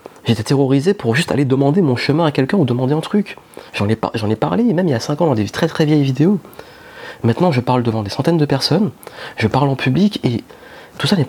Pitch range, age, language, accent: 110-140 Hz, 30-49, French, French